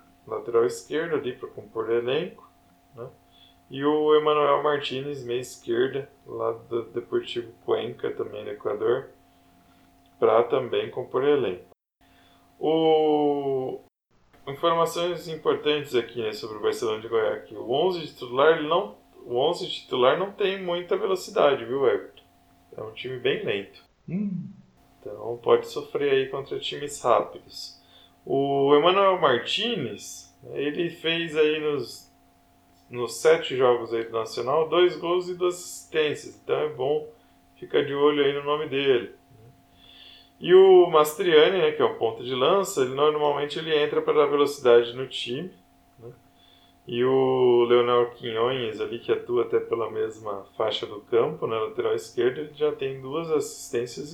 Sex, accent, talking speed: male, Brazilian, 145 wpm